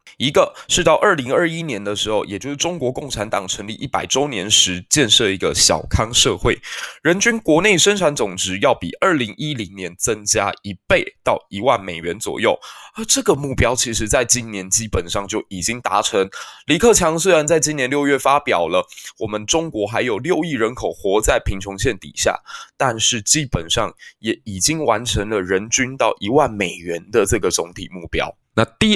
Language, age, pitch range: Chinese, 20-39, 100-140 Hz